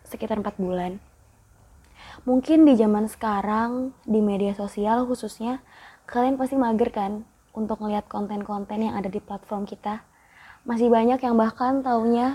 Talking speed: 135 wpm